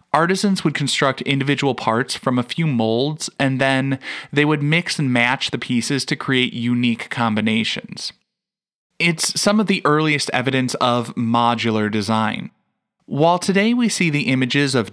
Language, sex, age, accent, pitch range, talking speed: English, male, 20-39, American, 110-145 Hz, 155 wpm